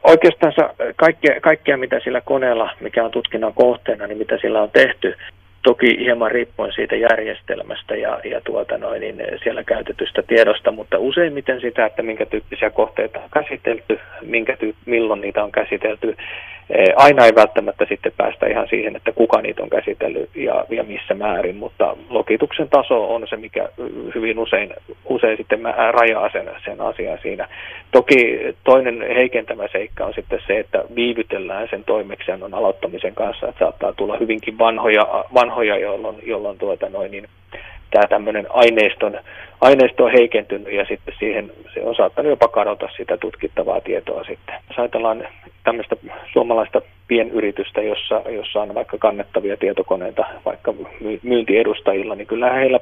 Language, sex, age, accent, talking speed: Finnish, male, 30-49, native, 145 wpm